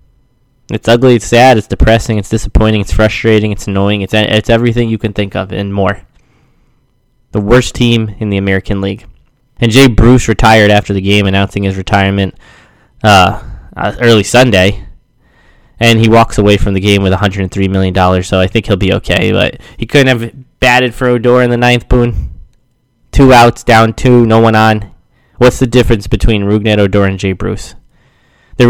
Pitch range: 100-120 Hz